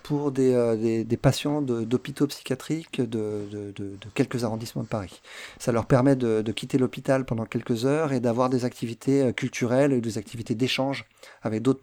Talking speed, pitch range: 195 wpm, 110-140 Hz